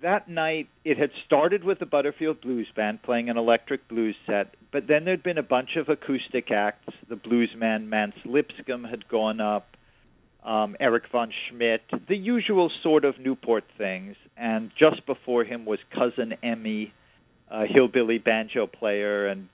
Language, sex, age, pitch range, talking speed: English, male, 50-69, 110-155 Hz, 165 wpm